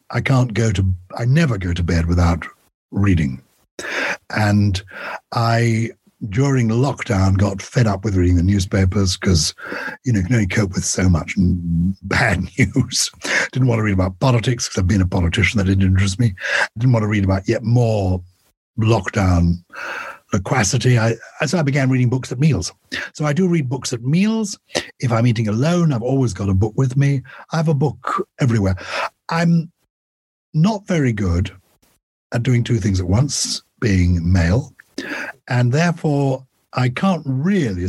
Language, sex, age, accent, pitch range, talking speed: English, male, 60-79, British, 95-130 Hz, 165 wpm